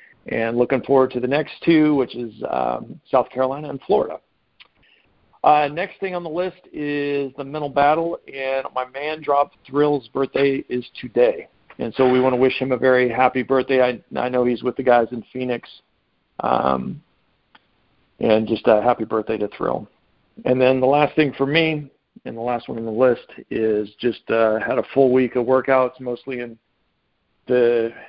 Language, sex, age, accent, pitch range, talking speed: English, male, 50-69, American, 120-145 Hz, 185 wpm